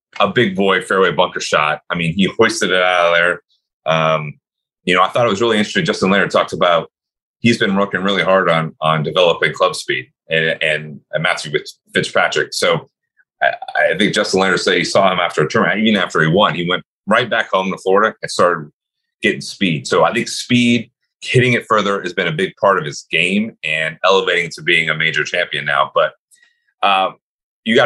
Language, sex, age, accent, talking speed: English, male, 30-49, American, 215 wpm